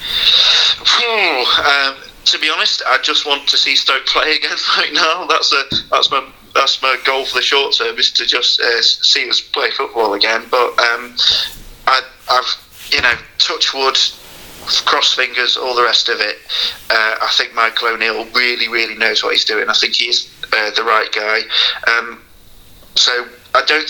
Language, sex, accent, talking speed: English, male, British, 180 wpm